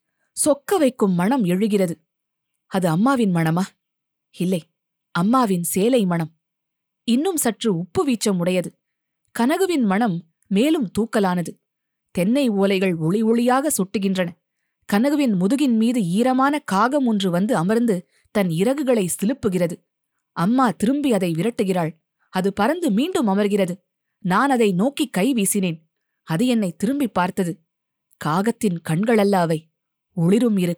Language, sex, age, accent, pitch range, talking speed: Tamil, female, 20-39, native, 175-230 Hz, 110 wpm